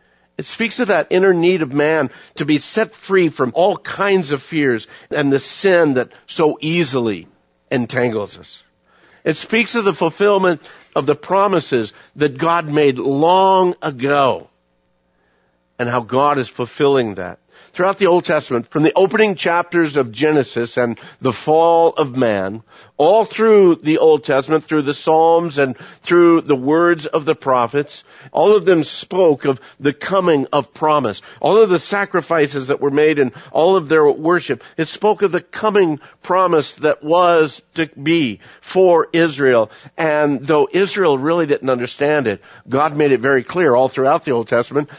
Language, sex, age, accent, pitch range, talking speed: English, male, 50-69, American, 135-180 Hz, 165 wpm